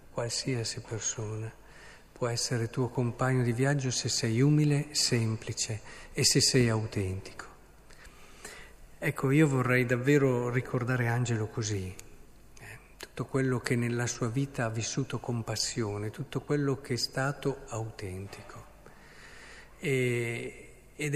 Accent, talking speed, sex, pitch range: native, 115 wpm, male, 110-130 Hz